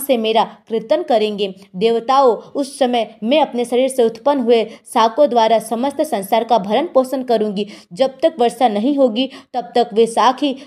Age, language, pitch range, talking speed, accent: 20-39, Hindi, 215-260 Hz, 175 wpm, native